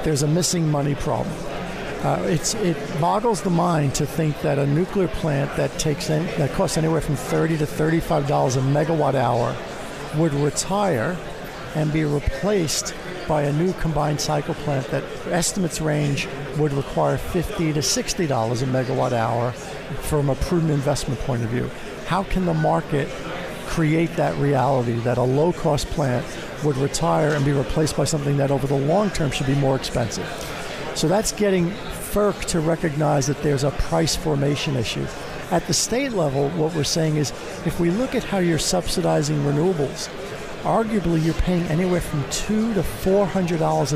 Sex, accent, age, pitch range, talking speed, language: male, American, 50-69, 140-170 Hz, 165 wpm, English